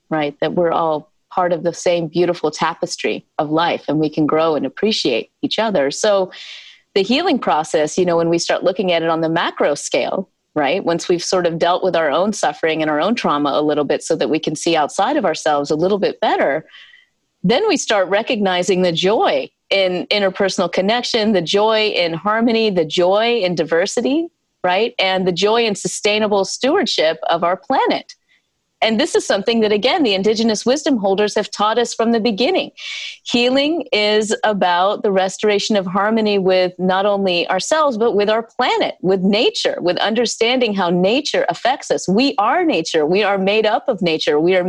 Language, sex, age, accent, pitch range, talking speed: English, female, 30-49, American, 180-230 Hz, 190 wpm